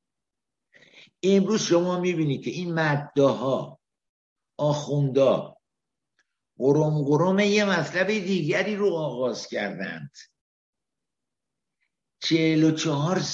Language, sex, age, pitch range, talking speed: Persian, male, 60-79, 145-185 Hz, 75 wpm